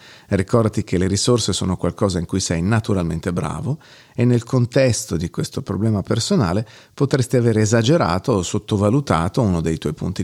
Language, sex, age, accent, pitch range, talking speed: Italian, male, 40-59, native, 95-125 Hz, 160 wpm